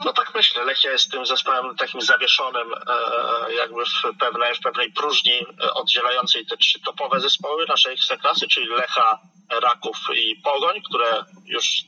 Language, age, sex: Polish, 40-59, male